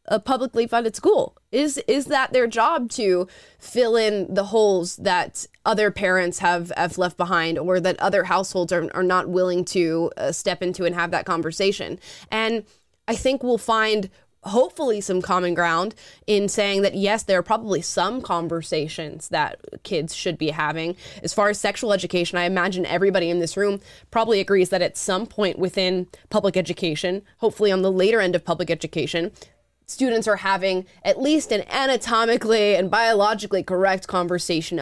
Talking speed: 170 wpm